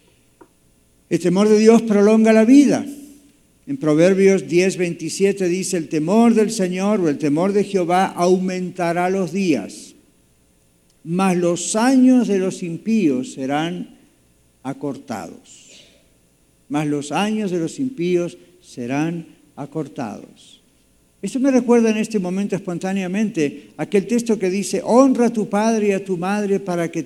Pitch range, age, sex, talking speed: 155-215 Hz, 50-69, male, 135 wpm